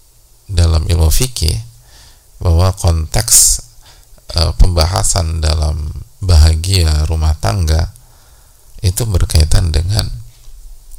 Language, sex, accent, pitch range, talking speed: English, male, Indonesian, 80-100 Hz, 75 wpm